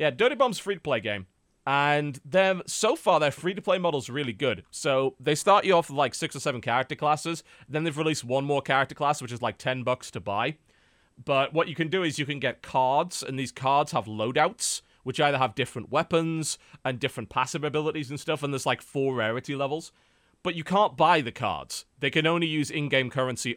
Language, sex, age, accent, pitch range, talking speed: English, male, 30-49, British, 125-155 Hz, 210 wpm